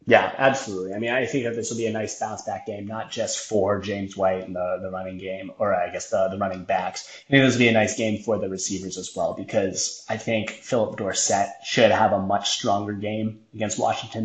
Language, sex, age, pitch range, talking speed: English, male, 20-39, 105-120 Hz, 245 wpm